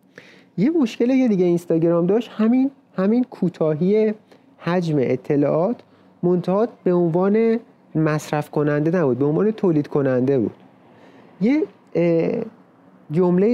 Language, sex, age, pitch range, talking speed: Persian, male, 30-49, 140-190 Hz, 105 wpm